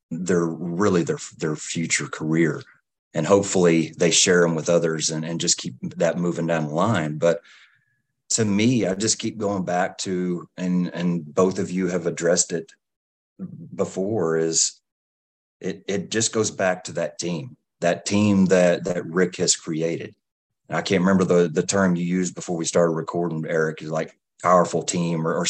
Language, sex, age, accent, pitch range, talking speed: English, male, 30-49, American, 85-100 Hz, 175 wpm